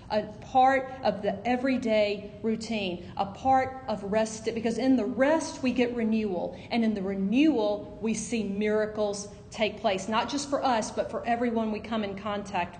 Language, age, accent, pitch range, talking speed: English, 40-59, American, 210-260 Hz, 175 wpm